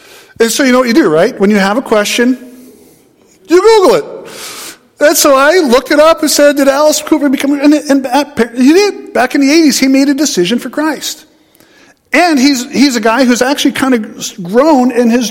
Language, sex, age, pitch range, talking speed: English, male, 50-69, 195-275 Hz, 210 wpm